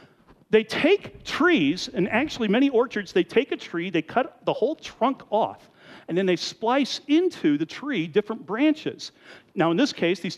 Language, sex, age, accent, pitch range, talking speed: English, male, 50-69, American, 180-290 Hz, 180 wpm